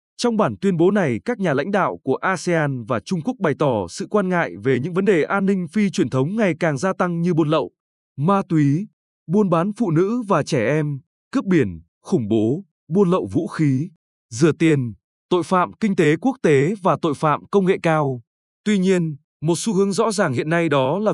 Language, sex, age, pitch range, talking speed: Vietnamese, male, 20-39, 150-200 Hz, 220 wpm